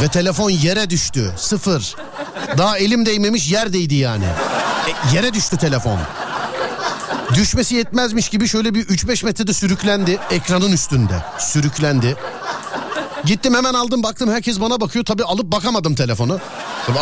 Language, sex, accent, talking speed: Turkish, male, native, 130 wpm